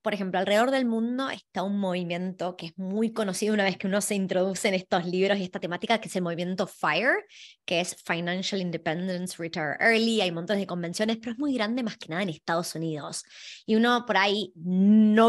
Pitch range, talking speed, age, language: 180-230 Hz, 210 wpm, 20-39, Spanish